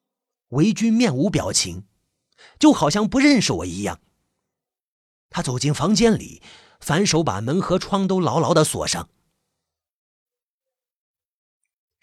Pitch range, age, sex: 150-225 Hz, 30-49, male